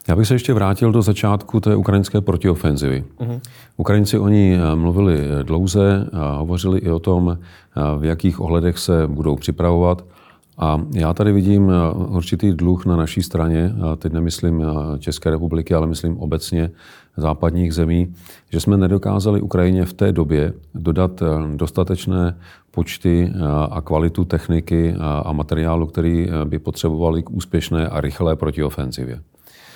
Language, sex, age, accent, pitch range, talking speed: Czech, male, 40-59, native, 80-95 Hz, 130 wpm